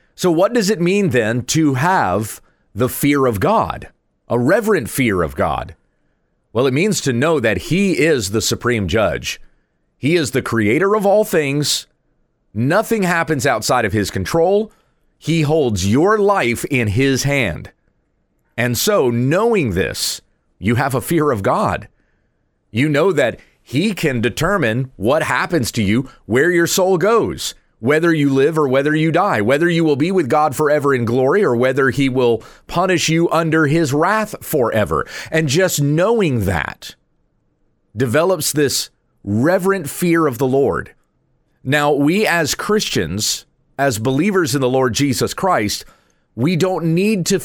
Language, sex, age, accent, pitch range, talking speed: English, male, 30-49, American, 125-170 Hz, 155 wpm